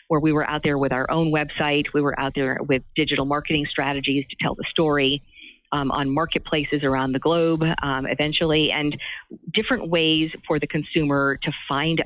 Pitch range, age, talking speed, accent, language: 140-165 Hz, 50-69, 185 wpm, American, English